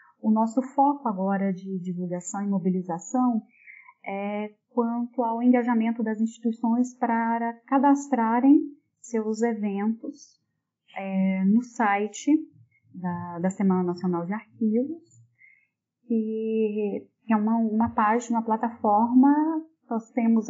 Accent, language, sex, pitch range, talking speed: Brazilian, Portuguese, female, 215-260 Hz, 105 wpm